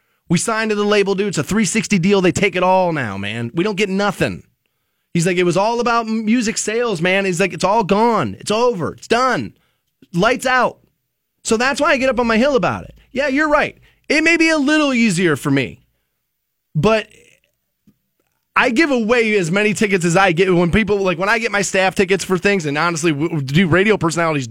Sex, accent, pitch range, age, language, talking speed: male, American, 165-220 Hz, 30-49, English, 215 wpm